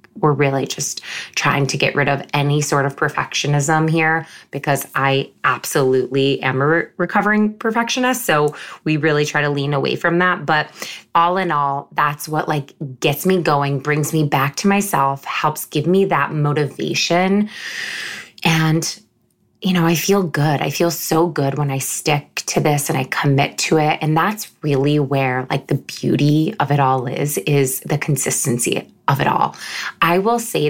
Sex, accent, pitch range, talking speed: female, American, 145-180 Hz, 175 wpm